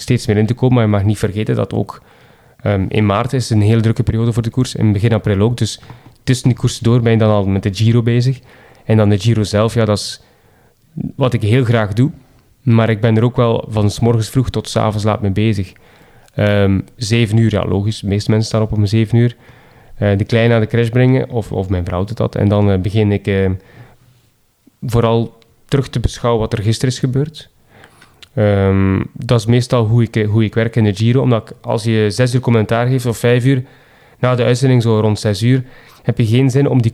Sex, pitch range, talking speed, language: male, 105-125 Hz, 235 wpm, Dutch